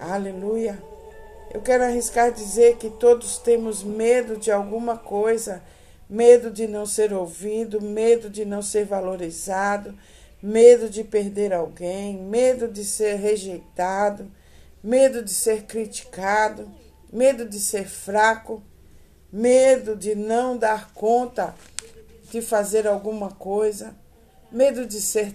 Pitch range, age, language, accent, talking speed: 190-225 Hz, 60-79, Portuguese, Brazilian, 120 wpm